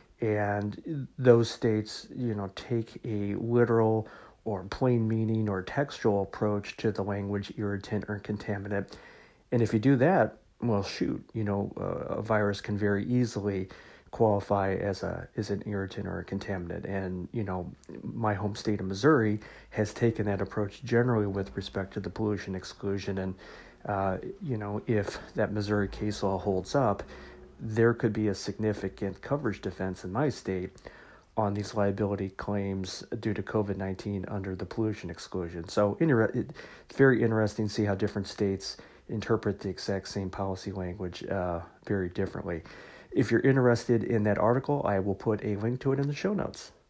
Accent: American